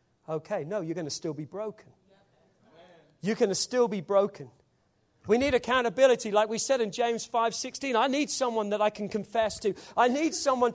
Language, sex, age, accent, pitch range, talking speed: English, male, 40-59, British, 165-235 Hz, 195 wpm